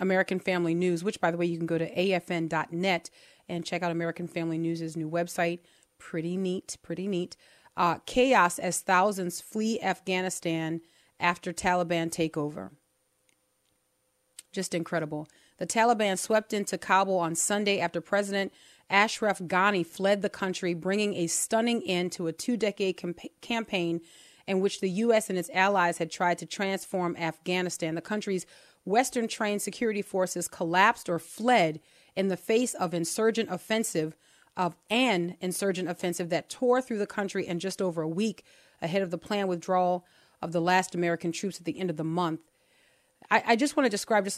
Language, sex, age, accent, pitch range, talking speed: English, female, 30-49, American, 170-200 Hz, 165 wpm